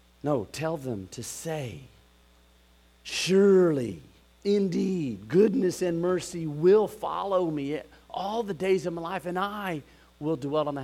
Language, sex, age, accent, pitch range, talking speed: English, male, 50-69, American, 115-175 Hz, 140 wpm